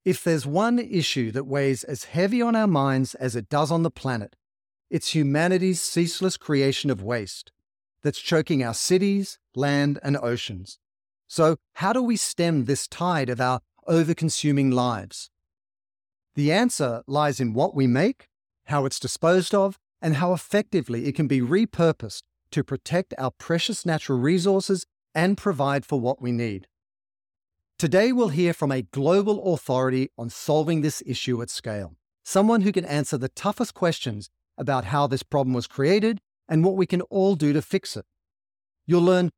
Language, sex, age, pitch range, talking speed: English, male, 40-59, 120-175 Hz, 165 wpm